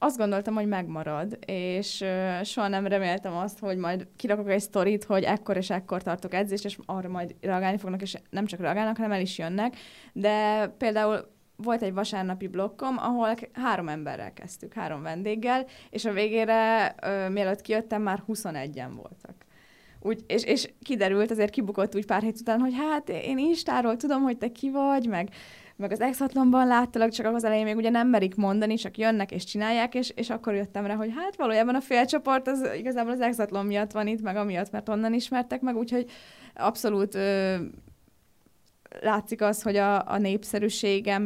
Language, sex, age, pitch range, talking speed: Hungarian, female, 20-39, 195-230 Hz, 180 wpm